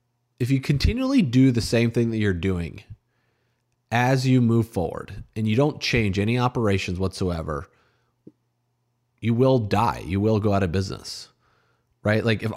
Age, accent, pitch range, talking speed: 30-49, American, 95-125 Hz, 160 wpm